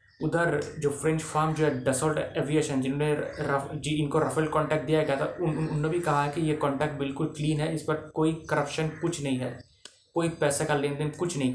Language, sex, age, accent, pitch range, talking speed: Hindi, male, 20-39, native, 140-165 Hz, 210 wpm